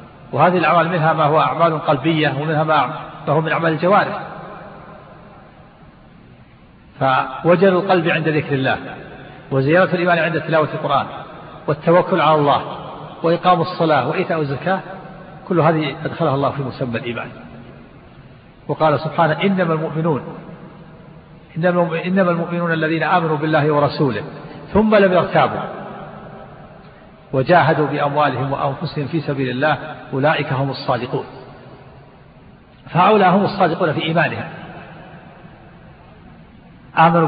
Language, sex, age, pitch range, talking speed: Arabic, male, 50-69, 145-175 Hz, 105 wpm